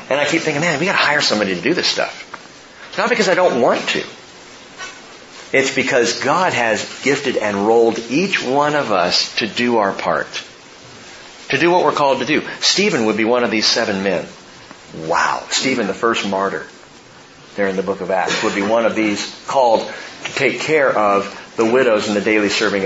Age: 40-59